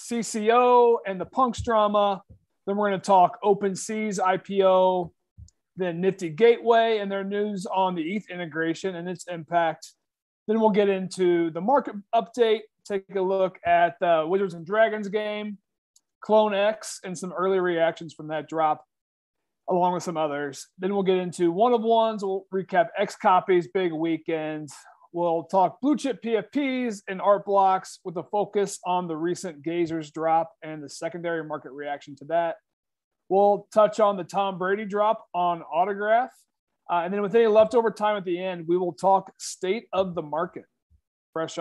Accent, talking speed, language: American, 170 wpm, English